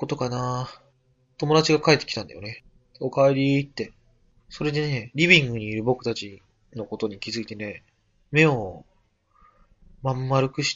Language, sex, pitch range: Japanese, male, 100-125 Hz